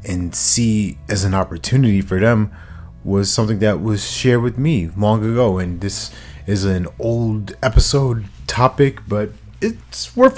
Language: English